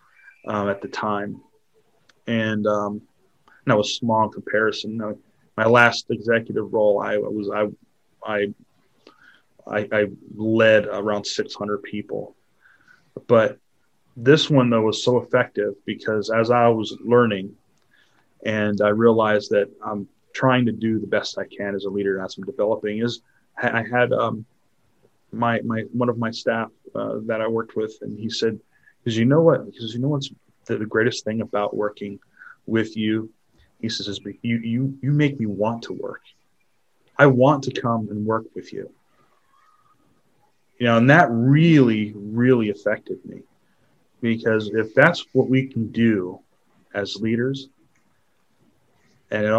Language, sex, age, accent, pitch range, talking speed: English, male, 30-49, American, 105-120 Hz, 150 wpm